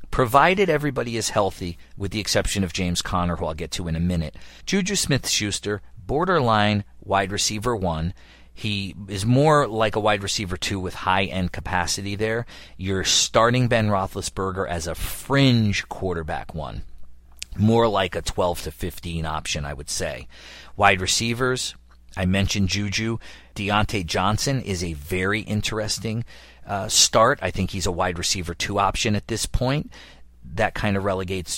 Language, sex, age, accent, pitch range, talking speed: English, male, 40-59, American, 85-105 Hz, 155 wpm